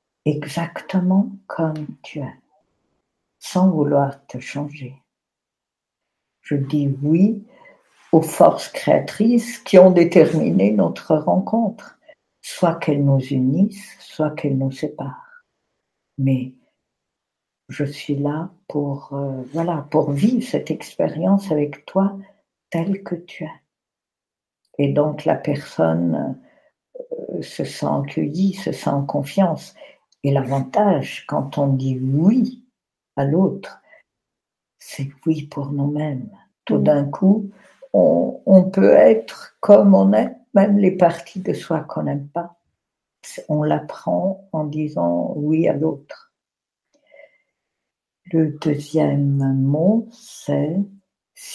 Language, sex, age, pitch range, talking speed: French, female, 60-79, 140-195 Hz, 115 wpm